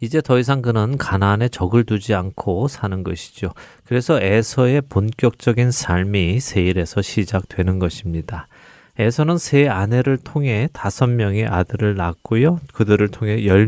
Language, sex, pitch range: Korean, male, 100-125 Hz